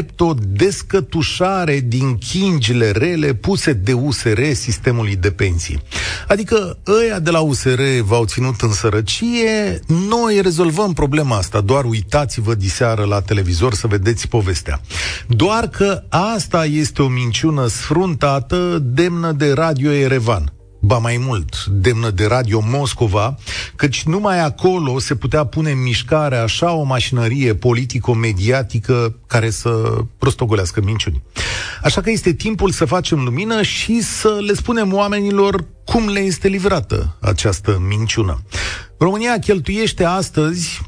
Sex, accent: male, native